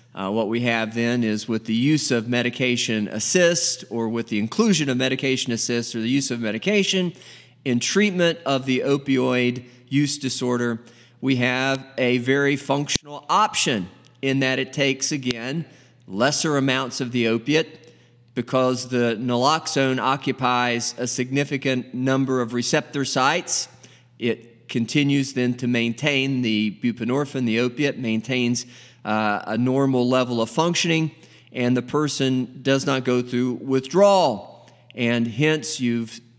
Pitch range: 120-140 Hz